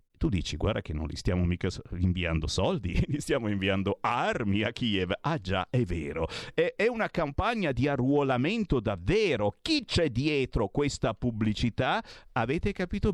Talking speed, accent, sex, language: 150 wpm, native, male, Italian